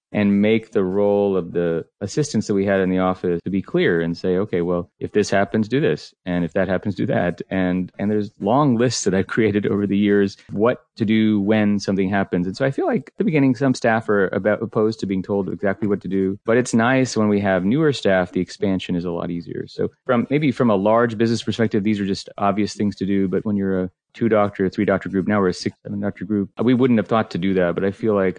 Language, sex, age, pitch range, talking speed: English, male, 30-49, 95-110 Hz, 255 wpm